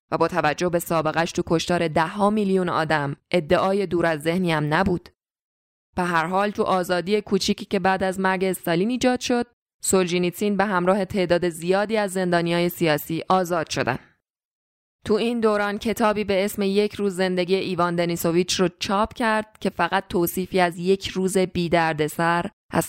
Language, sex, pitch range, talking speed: Persian, female, 165-200 Hz, 170 wpm